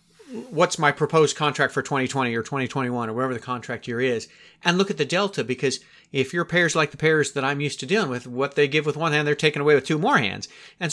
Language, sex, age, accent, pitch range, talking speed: English, male, 40-59, American, 130-160 Hz, 255 wpm